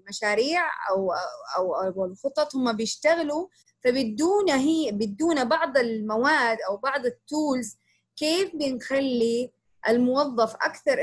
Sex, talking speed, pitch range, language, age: female, 100 wpm, 215-275 Hz, Arabic, 20-39